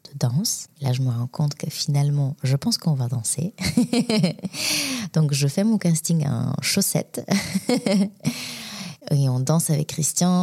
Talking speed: 150 wpm